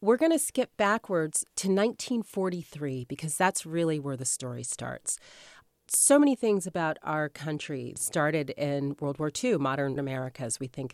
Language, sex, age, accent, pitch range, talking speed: English, female, 40-59, American, 140-200 Hz, 165 wpm